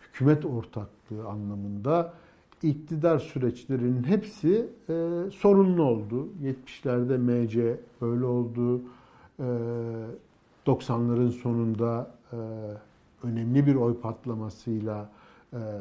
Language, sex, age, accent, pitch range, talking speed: Turkish, male, 60-79, native, 120-160 Hz, 85 wpm